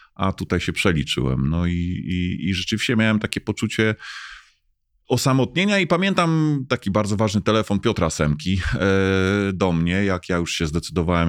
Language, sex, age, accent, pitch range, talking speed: Polish, male, 30-49, native, 85-95 Hz, 150 wpm